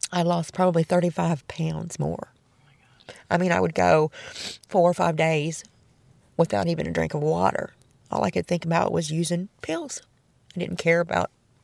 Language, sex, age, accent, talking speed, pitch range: English, female, 40-59, American, 170 wpm, 155-185 Hz